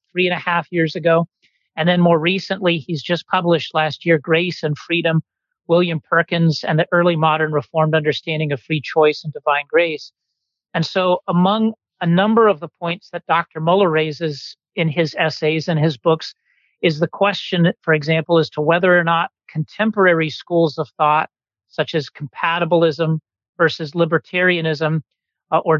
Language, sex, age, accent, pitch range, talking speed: English, male, 40-59, American, 155-175 Hz, 165 wpm